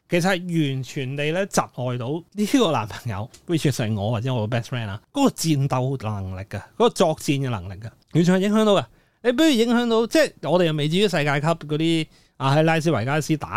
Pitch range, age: 130-195 Hz, 30-49